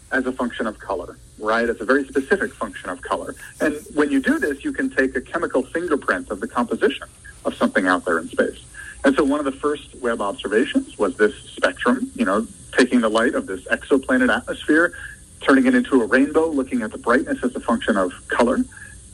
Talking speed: 210 wpm